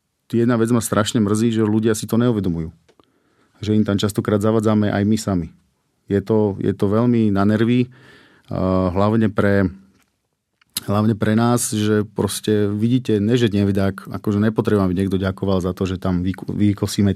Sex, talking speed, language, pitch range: male, 155 wpm, Slovak, 100-110 Hz